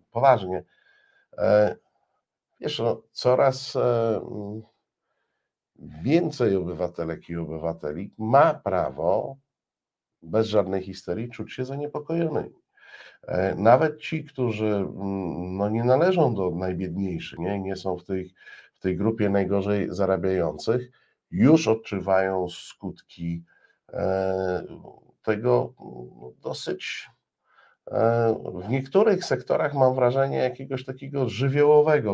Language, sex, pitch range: Polish, male, 95-125 Hz